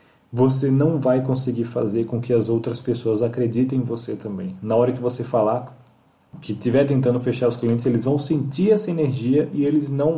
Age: 20-39